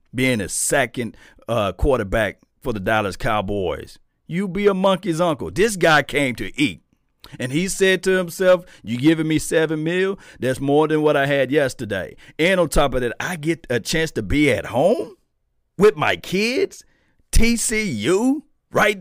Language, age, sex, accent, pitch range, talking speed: English, 40-59, male, American, 140-190 Hz, 170 wpm